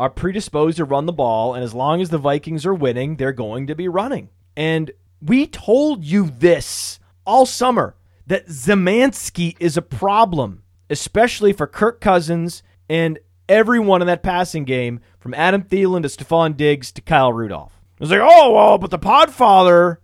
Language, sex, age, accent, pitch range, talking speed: English, male, 30-49, American, 120-190 Hz, 170 wpm